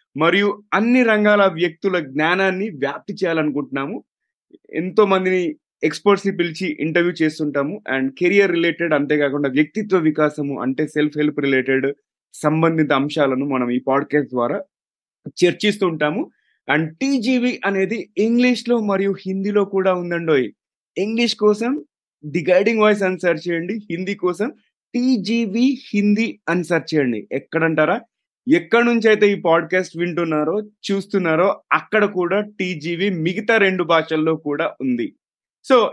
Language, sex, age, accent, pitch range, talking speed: Telugu, male, 20-39, native, 155-210 Hz, 120 wpm